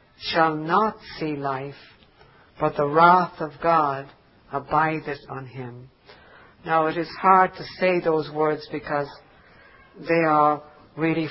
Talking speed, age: 125 wpm, 60-79